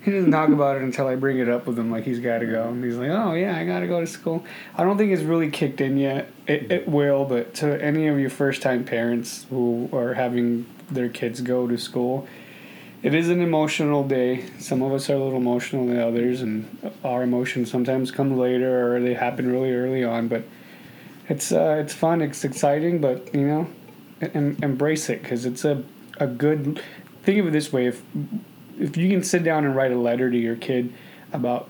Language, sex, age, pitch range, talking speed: English, male, 20-39, 120-145 Hz, 220 wpm